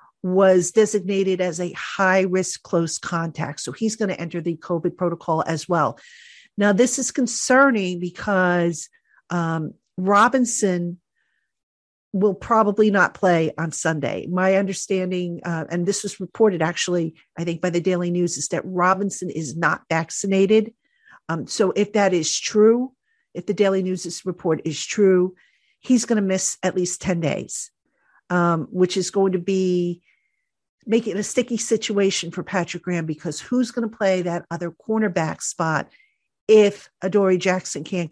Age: 50-69